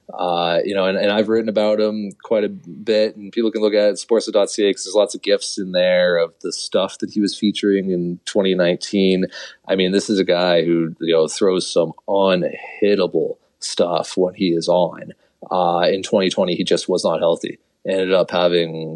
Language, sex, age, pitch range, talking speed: English, male, 30-49, 90-110 Hz, 195 wpm